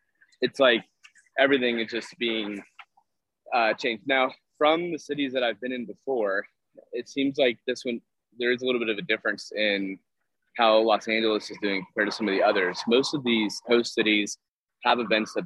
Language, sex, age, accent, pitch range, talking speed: English, male, 20-39, American, 105-120 Hz, 195 wpm